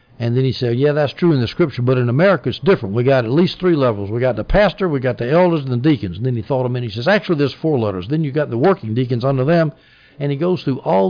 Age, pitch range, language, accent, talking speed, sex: 60-79, 115-150 Hz, English, American, 315 wpm, male